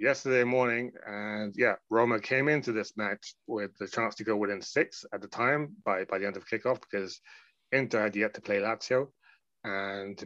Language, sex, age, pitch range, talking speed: English, male, 30-49, 105-130 Hz, 200 wpm